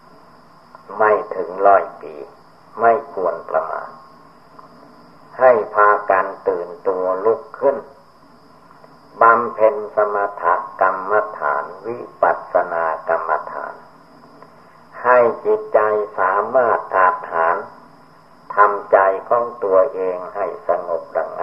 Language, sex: Thai, male